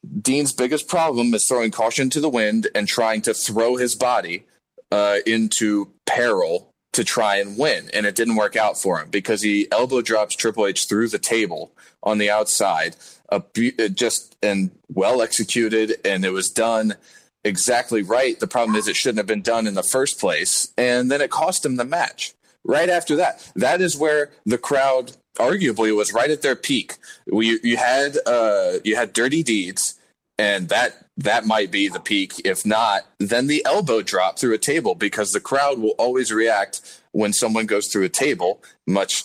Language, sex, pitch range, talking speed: English, male, 105-145 Hz, 185 wpm